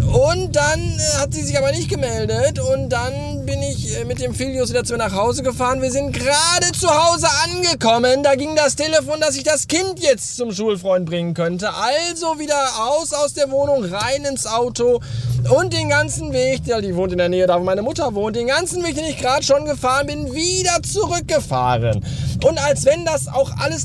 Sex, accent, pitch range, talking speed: male, German, 185-300 Hz, 200 wpm